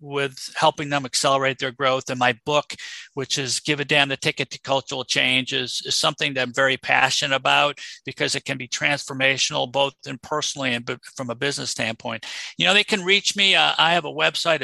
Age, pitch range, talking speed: 50-69, 135-170 Hz, 210 wpm